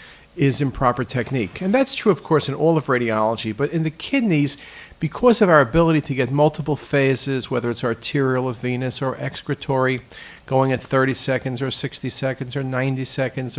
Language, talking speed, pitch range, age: English, 180 wpm, 130-160 Hz, 50-69